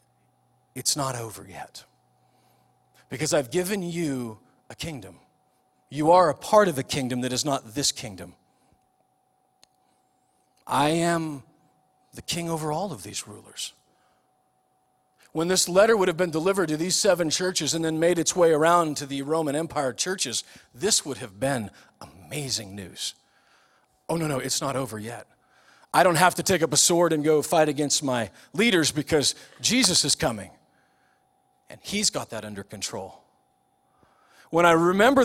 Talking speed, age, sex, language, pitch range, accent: 160 wpm, 40-59, male, English, 110-170 Hz, American